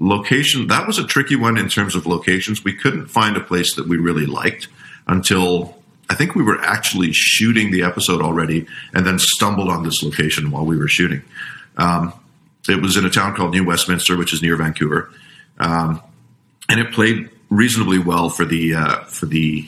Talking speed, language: 190 wpm, English